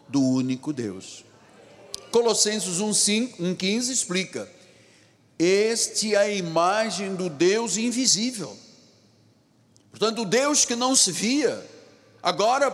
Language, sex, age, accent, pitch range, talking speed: Portuguese, male, 60-79, Brazilian, 155-245 Hz, 100 wpm